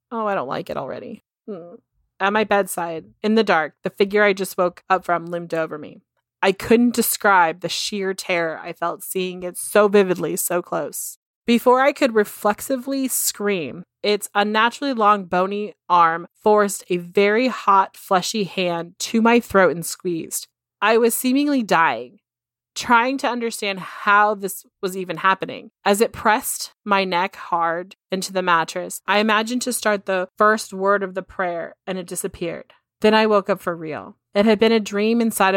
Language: English